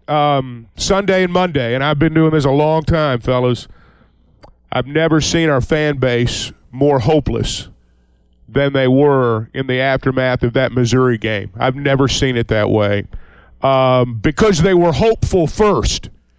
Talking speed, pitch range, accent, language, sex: 155 wpm, 130-185 Hz, American, English, male